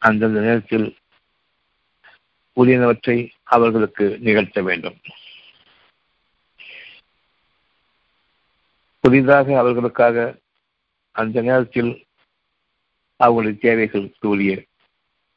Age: 50-69